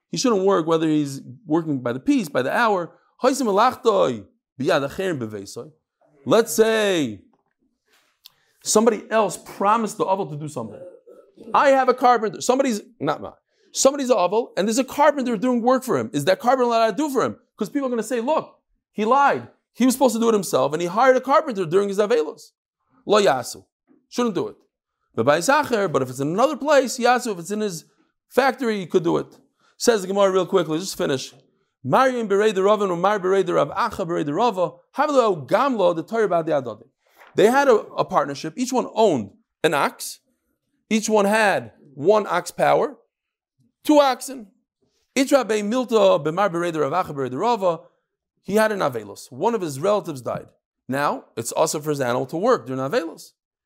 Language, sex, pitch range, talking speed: English, male, 175-255 Hz, 155 wpm